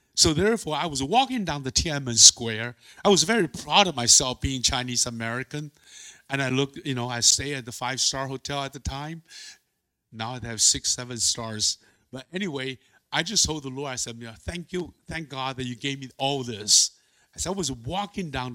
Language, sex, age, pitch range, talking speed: English, male, 50-69, 120-165 Hz, 195 wpm